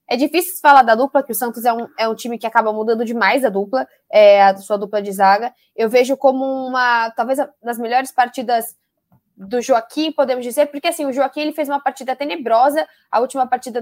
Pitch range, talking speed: 240-300 Hz, 200 wpm